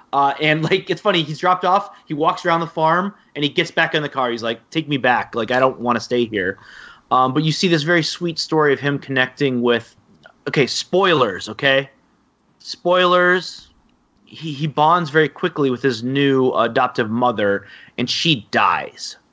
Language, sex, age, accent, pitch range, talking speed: English, male, 30-49, American, 115-150 Hz, 190 wpm